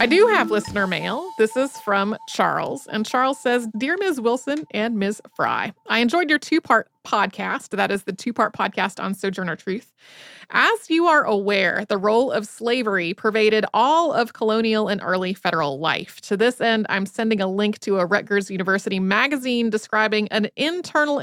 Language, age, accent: English, 30-49, American